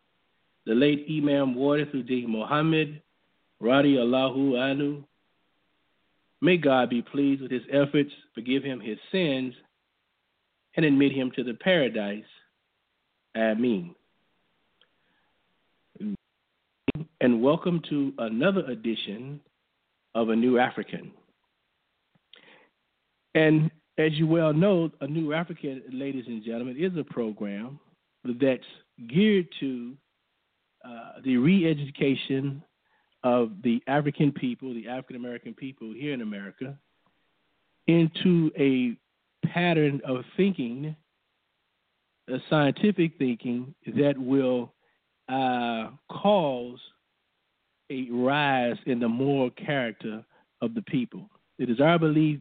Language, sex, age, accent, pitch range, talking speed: English, male, 50-69, American, 120-155 Hz, 105 wpm